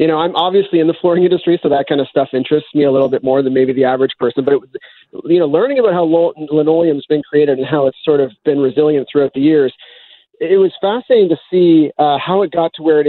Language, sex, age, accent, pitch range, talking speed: English, male, 30-49, American, 140-185 Hz, 255 wpm